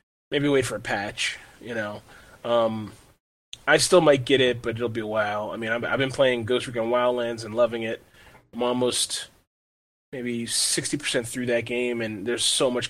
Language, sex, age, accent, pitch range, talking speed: English, male, 20-39, American, 115-140 Hz, 190 wpm